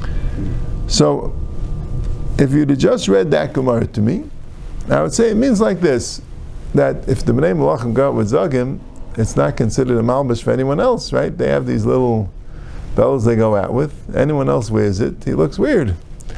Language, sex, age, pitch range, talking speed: English, male, 50-69, 115-175 Hz, 185 wpm